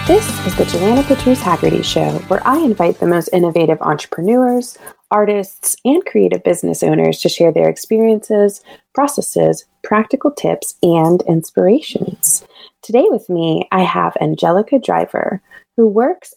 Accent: American